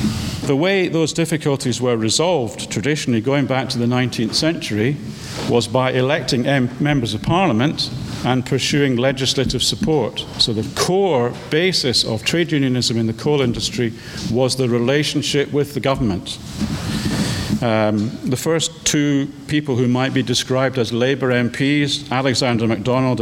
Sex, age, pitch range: male, 50-69, 120-140 Hz